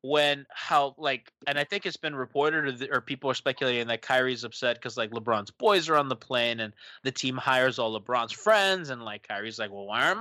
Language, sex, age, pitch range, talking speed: English, male, 20-39, 120-150 Hz, 235 wpm